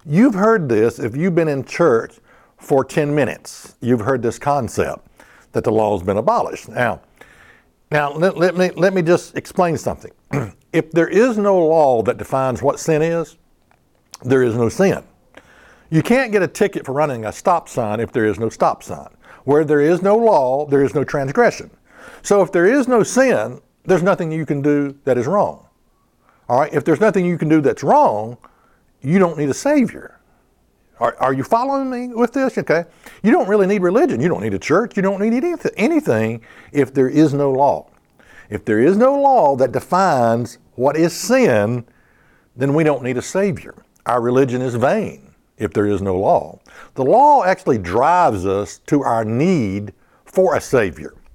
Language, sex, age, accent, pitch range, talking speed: English, male, 60-79, American, 130-190 Hz, 190 wpm